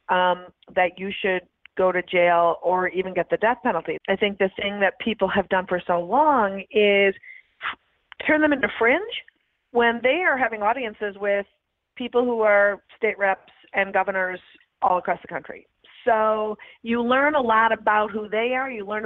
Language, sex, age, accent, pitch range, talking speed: English, female, 40-59, American, 190-235 Hz, 180 wpm